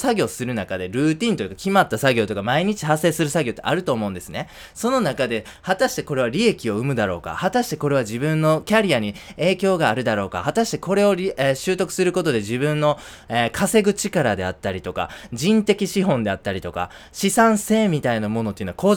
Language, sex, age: Japanese, male, 20-39